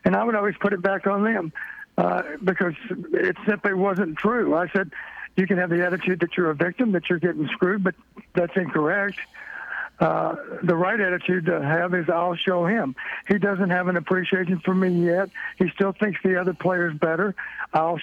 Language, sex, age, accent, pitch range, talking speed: English, male, 60-79, American, 175-200 Hz, 195 wpm